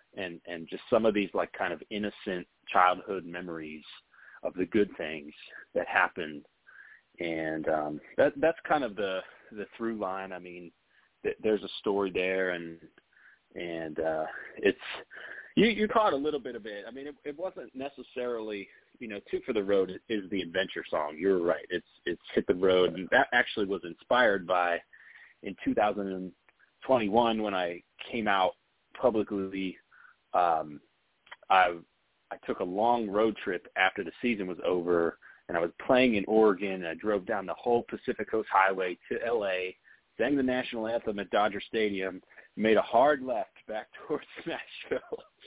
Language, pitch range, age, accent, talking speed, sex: English, 90-110 Hz, 30-49, American, 165 wpm, male